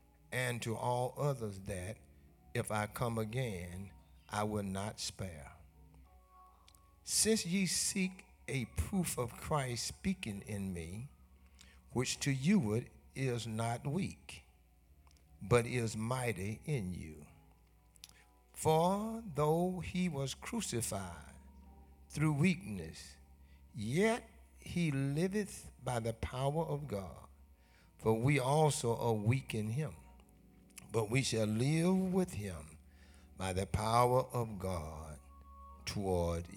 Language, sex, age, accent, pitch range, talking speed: English, male, 60-79, American, 85-130 Hz, 110 wpm